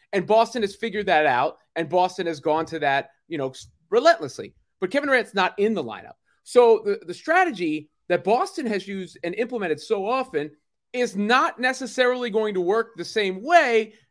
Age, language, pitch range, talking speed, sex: 30-49, English, 170-240 Hz, 185 wpm, male